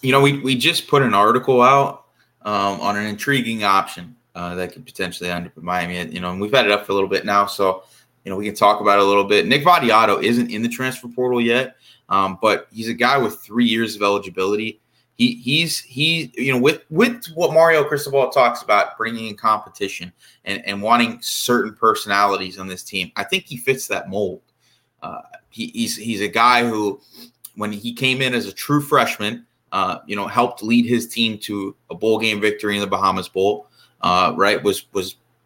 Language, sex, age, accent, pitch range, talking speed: English, male, 20-39, American, 100-125 Hz, 210 wpm